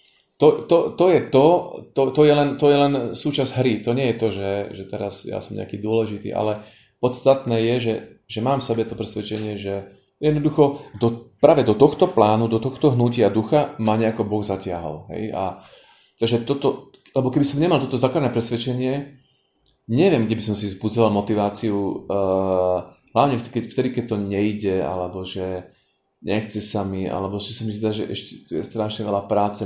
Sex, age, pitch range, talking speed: male, 30-49, 100-125 Hz, 180 wpm